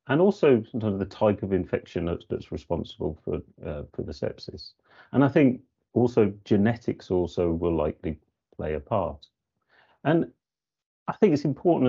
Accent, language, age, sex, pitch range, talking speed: British, English, 40-59, male, 90-120 Hz, 150 wpm